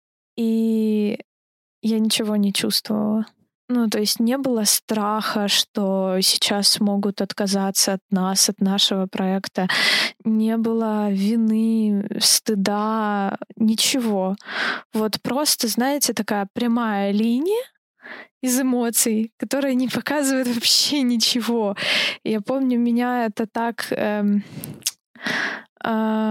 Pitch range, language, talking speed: 205-235 Hz, Ukrainian, 105 wpm